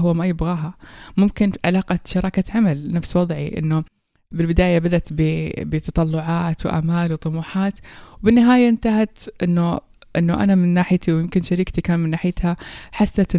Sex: female